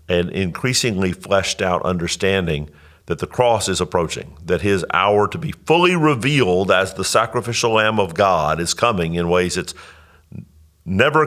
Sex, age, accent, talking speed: male, 50-69, American, 155 wpm